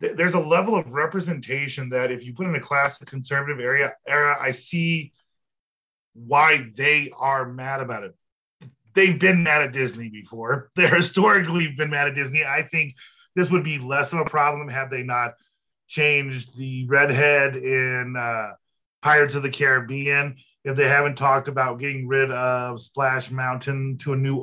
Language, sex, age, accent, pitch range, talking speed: English, male, 30-49, American, 125-150 Hz, 175 wpm